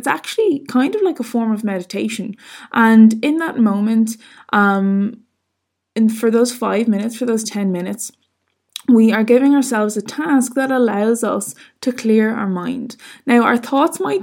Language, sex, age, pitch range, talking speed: English, female, 20-39, 210-250 Hz, 165 wpm